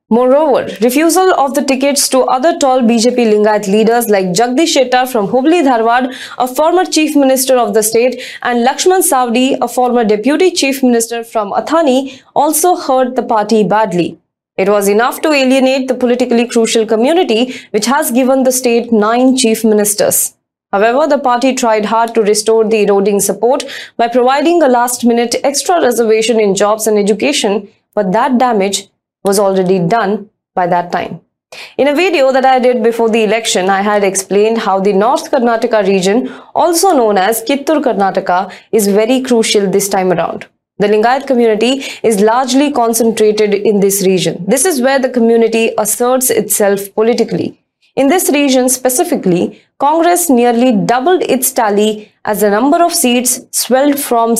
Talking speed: 160 wpm